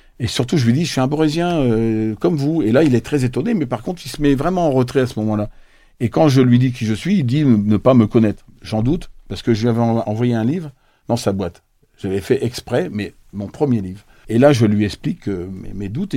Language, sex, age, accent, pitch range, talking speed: French, male, 60-79, French, 105-130 Hz, 270 wpm